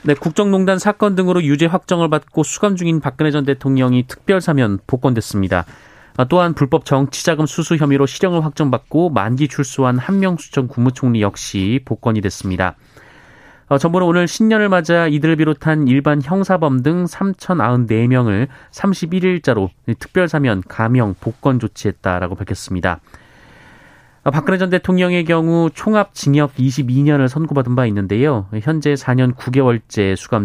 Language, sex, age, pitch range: Korean, male, 30-49, 115-165 Hz